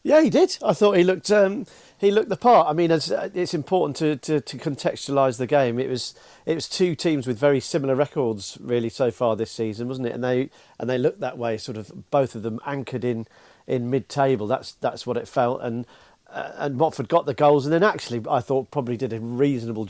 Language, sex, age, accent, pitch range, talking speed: English, male, 40-59, British, 125-170 Hz, 235 wpm